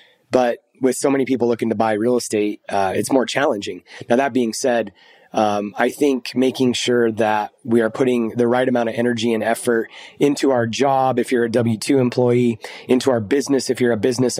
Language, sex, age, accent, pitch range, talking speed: English, male, 20-39, American, 110-130 Hz, 205 wpm